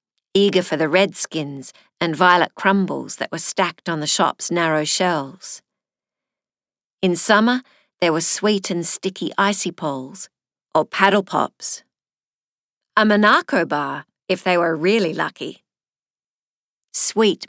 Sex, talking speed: female, 125 wpm